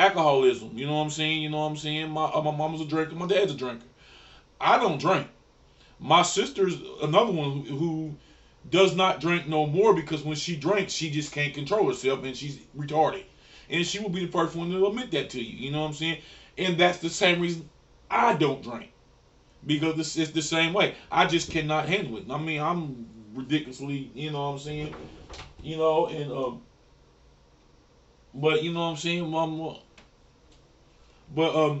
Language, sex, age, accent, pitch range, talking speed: English, male, 20-39, American, 145-185 Hz, 195 wpm